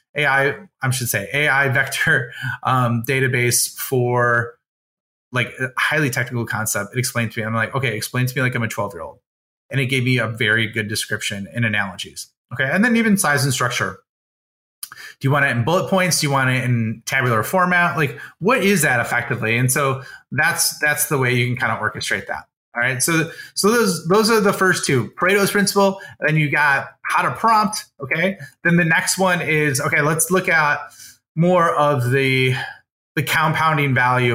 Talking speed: 195 wpm